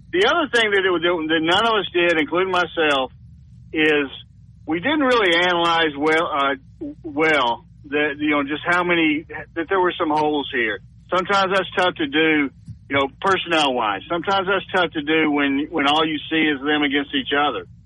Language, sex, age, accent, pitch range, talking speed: English, male, 50-69, American, 140-175 Hz, 195 wpm